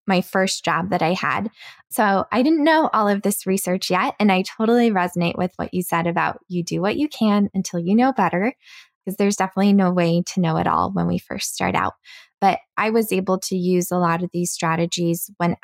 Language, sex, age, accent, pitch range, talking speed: English, female, 20-39, American, 170-200 Hz, 225 wpm